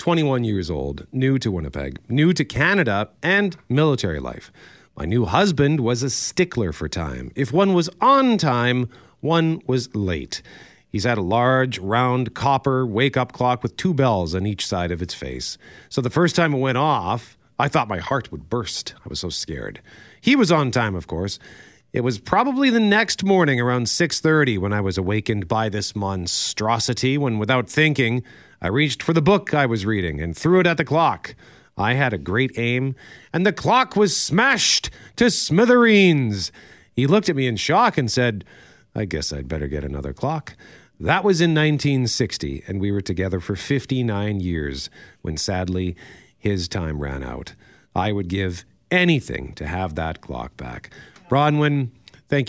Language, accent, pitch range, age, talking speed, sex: English, American, 90-145 Hz, 40-59, 175 wpm, male